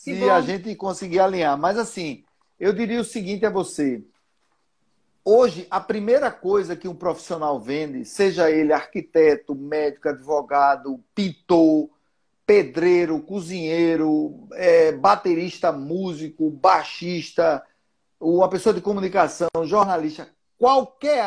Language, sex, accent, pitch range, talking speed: Portuguese, male, Brazilian, 160-200 Hz, 105 wpm